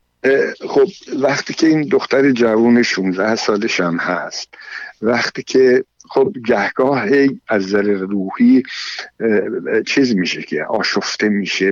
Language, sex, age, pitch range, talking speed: Persian, male, 60-79, 95-135 Hz, 110 wpm